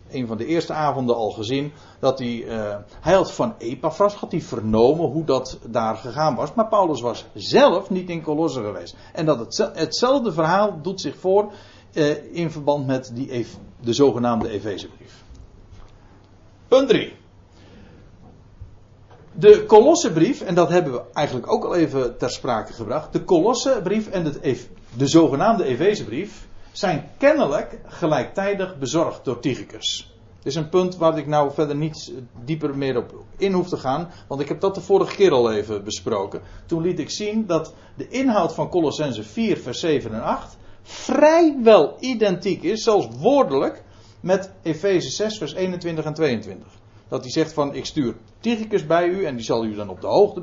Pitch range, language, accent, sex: 115-185 Hz, Dutch, Dutch, male